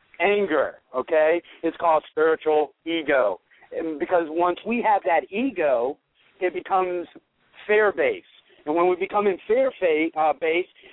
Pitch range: 160-205 Hz